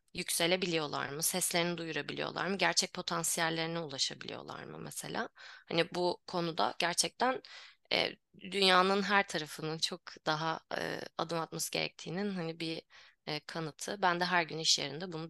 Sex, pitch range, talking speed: female, 165-190 Hz, 135 wpm